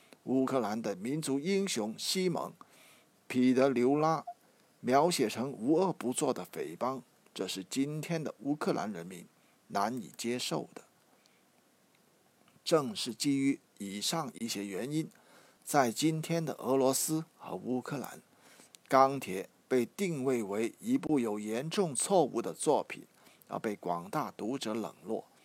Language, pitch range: Chinese, 125-165 Hz